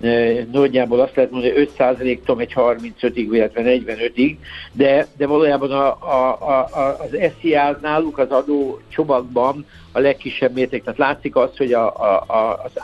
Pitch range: 115-140 Hz